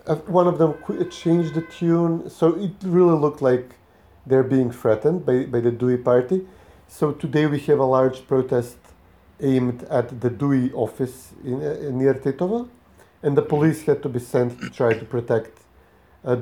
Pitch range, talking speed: 105-130 Hz, 180 wpm